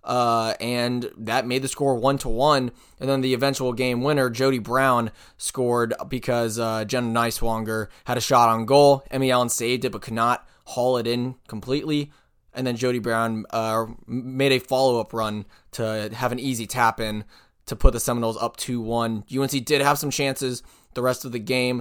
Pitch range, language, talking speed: 115-135 Hz, English, 195 wpm